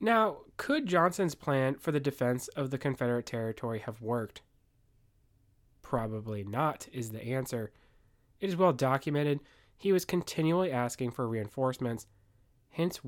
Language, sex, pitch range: English, male, 105-140 Hz